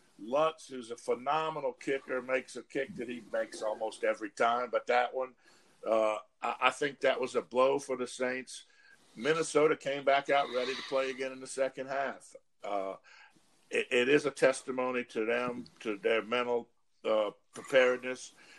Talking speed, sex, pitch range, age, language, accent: 170 wpm, male, 125-150 Hz, 50-69, English, American